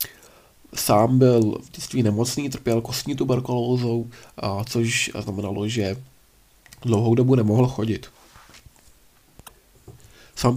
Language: Czech